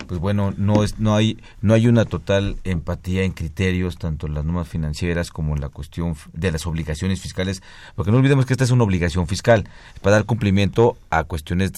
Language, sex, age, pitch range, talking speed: Spanish, male, 40-59, 80-100 Hz, 205 wpm